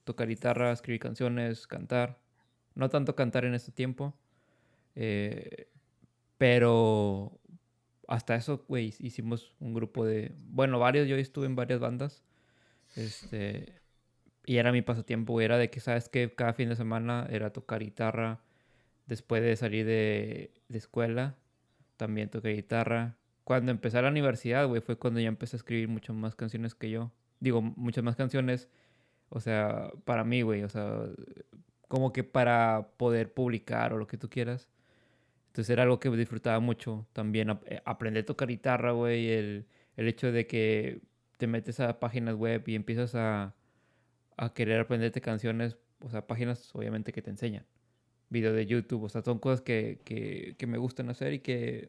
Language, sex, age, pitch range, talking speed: Spanish, male, 20-39, 115-125 Hz, 165 wpm